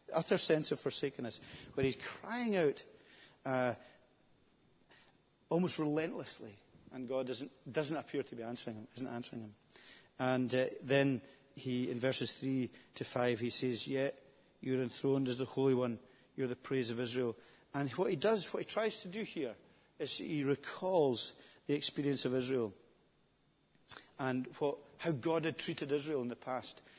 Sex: male